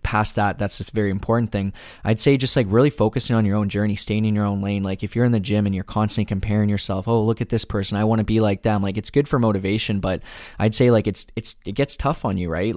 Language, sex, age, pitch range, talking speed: English, male, 10-29, 100-110 Hz, 285 wpm